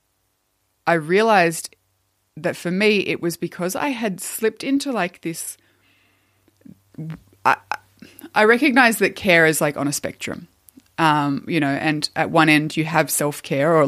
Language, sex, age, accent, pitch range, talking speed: English, female, 20-39, Australian, 140-175 Hz, 145 wpm